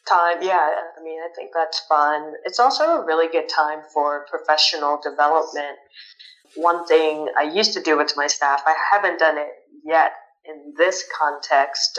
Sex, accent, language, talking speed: female, American, English, 170 wpm